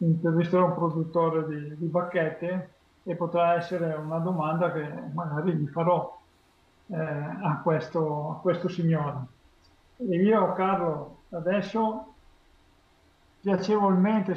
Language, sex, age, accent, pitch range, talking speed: Italian, male, 50-69, native, 160-190 Hz, 105 wpm